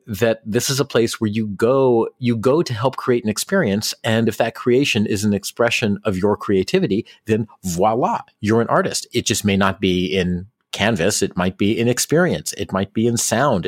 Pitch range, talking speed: 95-120 Hz, 205 wpm